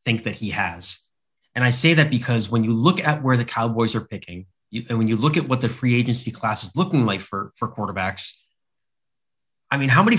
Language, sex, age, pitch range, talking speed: English, male, 30-49, 115-150 Hz, 225 wpm